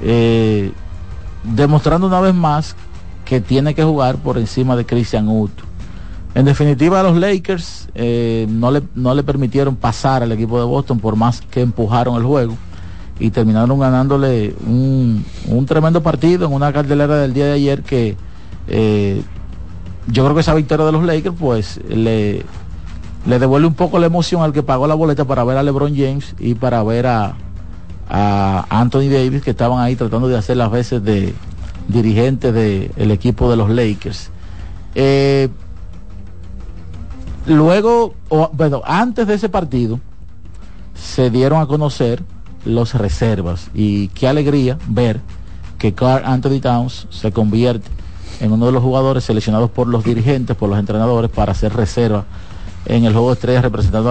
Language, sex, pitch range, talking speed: Spanish, male, 100-135 Hz, 160 wpm